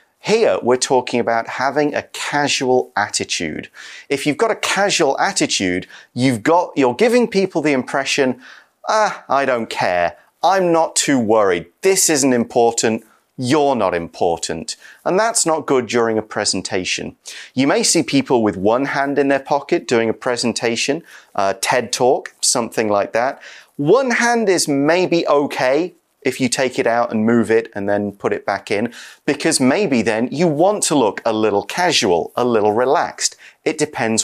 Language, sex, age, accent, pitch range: Chinese, male, 30-49, British, 115-160 Hz